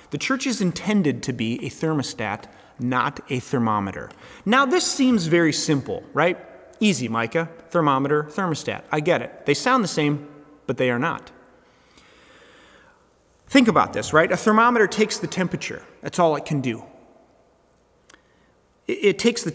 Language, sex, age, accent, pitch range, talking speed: English, male, 30-49, American, 140-200 Hz, 150 wpm